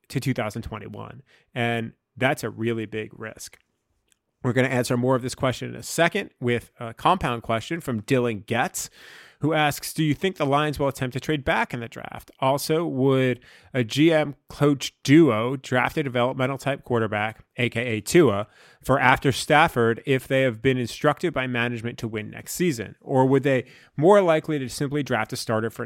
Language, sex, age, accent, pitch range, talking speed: English, male, 30-49, American, 120-150 Hz, 180 wpm